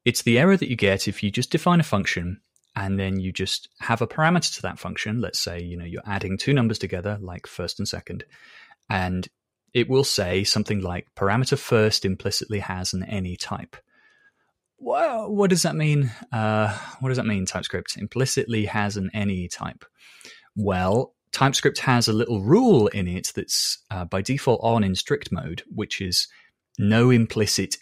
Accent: British